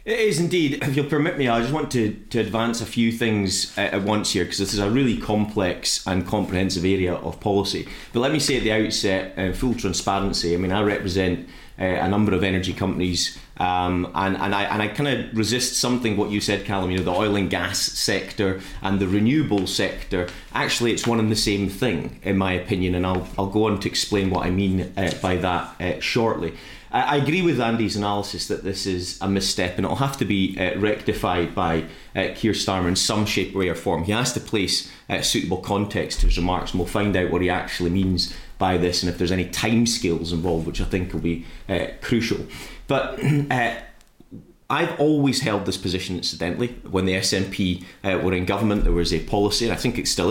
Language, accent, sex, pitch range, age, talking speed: English, British, male, 90-110 Hz, 30-49, 220 wpm